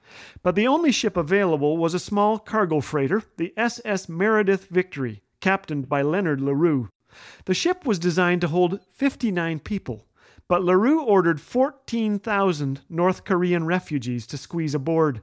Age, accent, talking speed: 40-59, American, 140 wpm